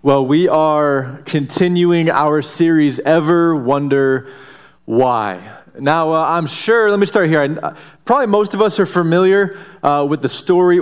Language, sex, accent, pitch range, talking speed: English, male, American, 145-180 Hz, 150 wpm